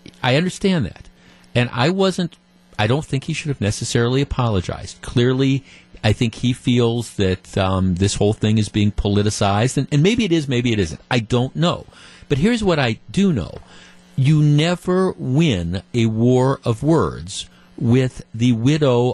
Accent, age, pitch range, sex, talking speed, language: American, 50-69, 110-150 Hz, male, 170 wpm, English